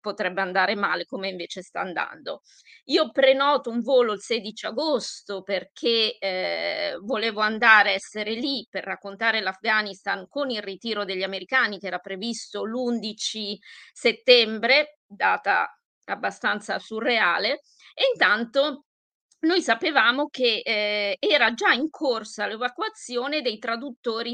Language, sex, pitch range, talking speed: Italian, female, 205-275 Hz, 125 wpm